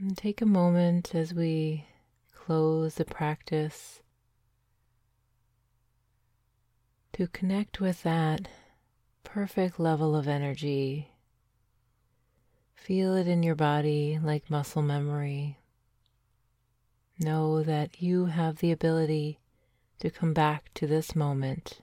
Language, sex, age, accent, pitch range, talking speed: English, female, 30-49, American, 120-160 Hz, 100 wpm